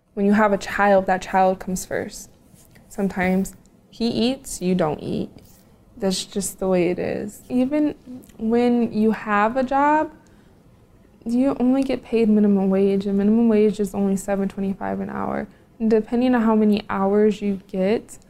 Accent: American